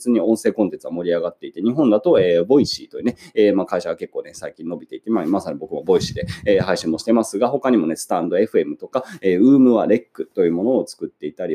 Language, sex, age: Japanese, male, 20-39